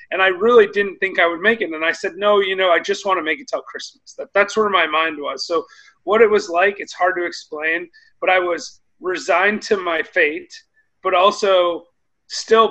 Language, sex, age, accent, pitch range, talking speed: English, male, 30-49, American, 165-225 Hz, 220 wpm